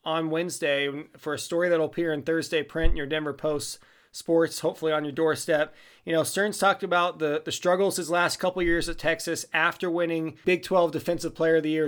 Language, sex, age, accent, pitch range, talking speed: English, male, 20-39, American, 160-185 Hz, 220 wpm